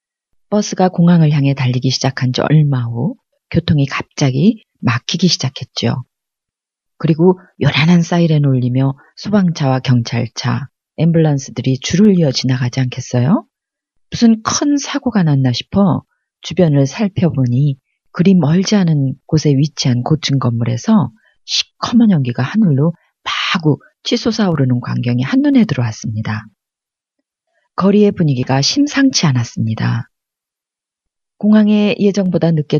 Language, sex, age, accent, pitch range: Korean, female, 40-59, native, 130-195 Hz